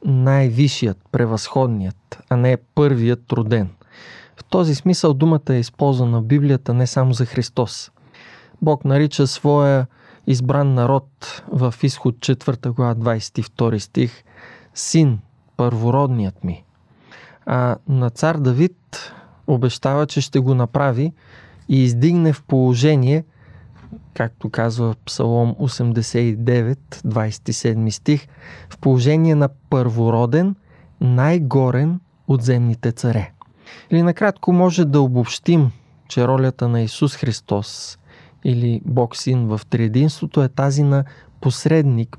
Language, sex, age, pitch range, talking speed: Bulgarian, male, 20-39, 120-145 Hz, 110 wpm